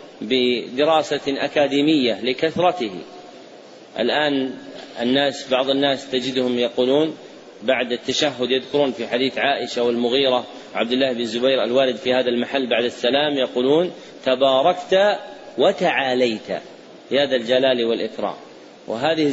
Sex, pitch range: male, 125-145 Hz